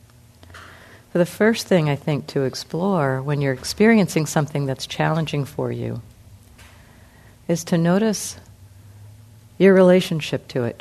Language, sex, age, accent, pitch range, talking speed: English, female, 50-69, American, 120-160 Hz, 130 wpm